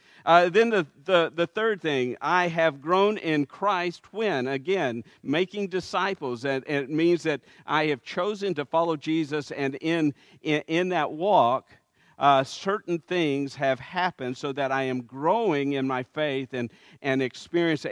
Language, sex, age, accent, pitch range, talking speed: English, male, 50-69, American, 130-170 Hz, 165 wpm